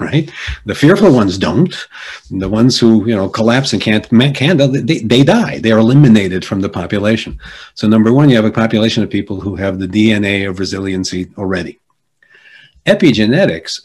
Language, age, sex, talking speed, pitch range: English, 50-69, male, 180 wpm, 95-115 Hz